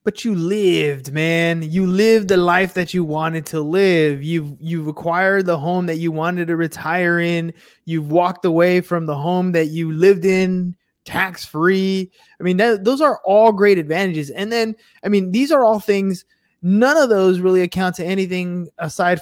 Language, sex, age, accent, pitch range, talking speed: English, male, 20-39, American, 155-195 Hz, 180 wpm